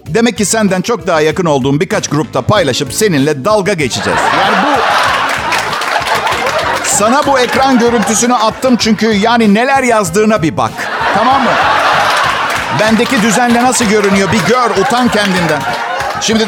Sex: male